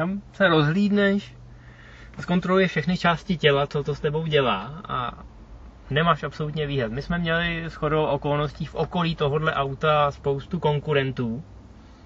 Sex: male